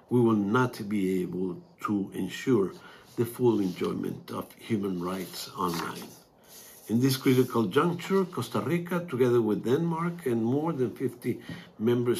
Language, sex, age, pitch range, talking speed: Danish, male, 60-79, 110-130 Hz, 140 wpm